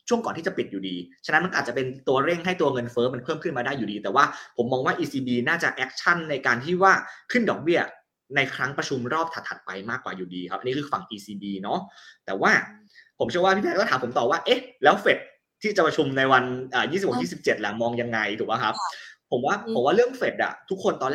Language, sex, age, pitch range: Thai, male, 20-39, 120-175 Hz